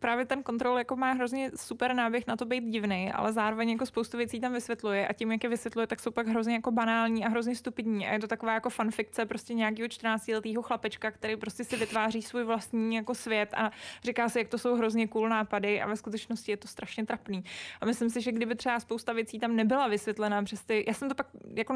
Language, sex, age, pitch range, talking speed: Czech, female, 20-39, 215-245 Hz, 235 wpm